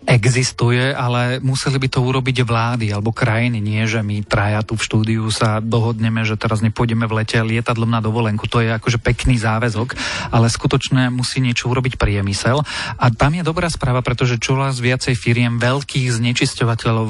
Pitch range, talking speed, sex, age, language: 115-130 Hz, 170 wpm, male, 30-49, Slovak